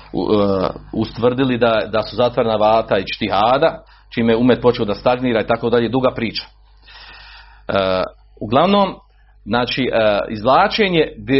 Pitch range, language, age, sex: 120-185 Hz, Croatian, 40-59, male